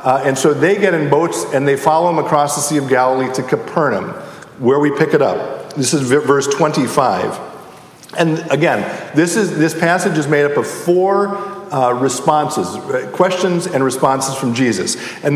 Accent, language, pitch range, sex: American, English, 145-195 Hz, male